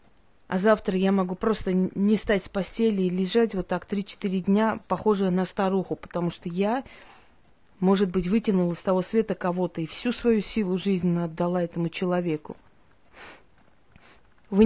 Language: Russian